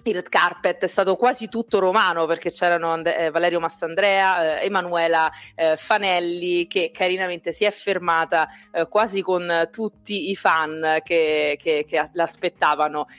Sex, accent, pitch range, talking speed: female, native, 160-195 Hz, 145 wpm